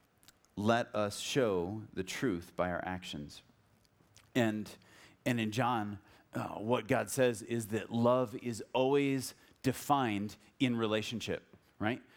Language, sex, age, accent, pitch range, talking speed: English, male, 30-49, American, 110-135 Hz, 125 wpm